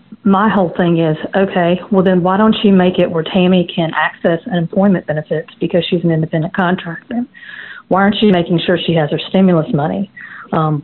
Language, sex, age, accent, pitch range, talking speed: English, female, 40-59, American, 165-195 Hz, 190 wpm